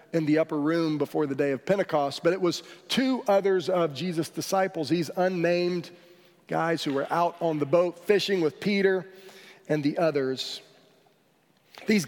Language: English